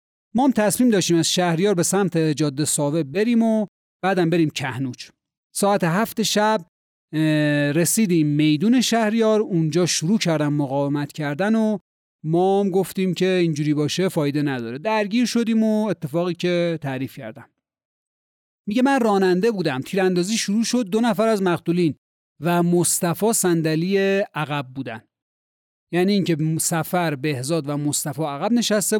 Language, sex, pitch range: Persian, male, 150-210 Hz